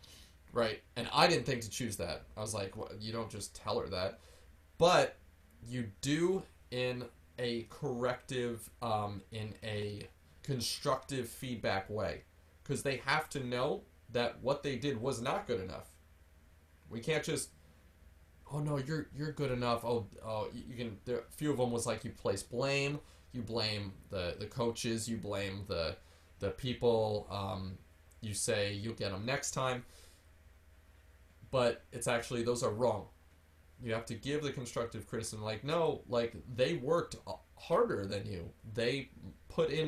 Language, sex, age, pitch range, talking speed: English, male, 20-39, 80-125 Hz, 165 wpm